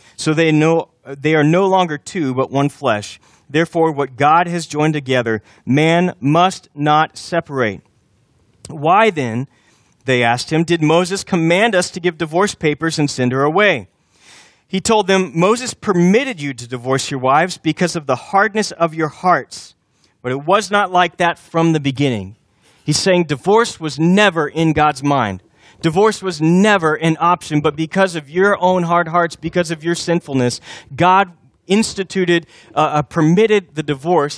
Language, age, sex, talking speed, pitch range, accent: English, 30-49, male, 160 wpm, 130-175 Hz, American